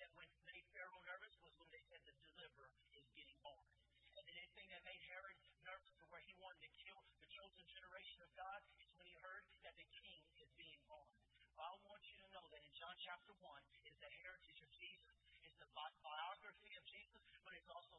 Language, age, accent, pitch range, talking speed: English, 30-49, American, 165-215 Hz, 210 wpm